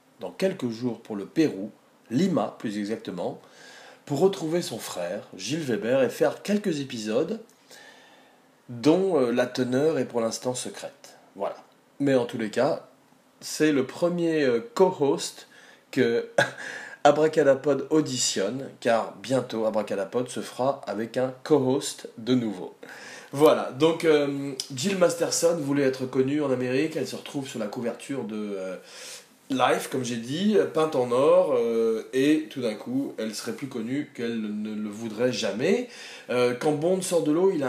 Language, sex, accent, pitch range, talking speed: French, male, French, 120-155 Hz, 155 wpm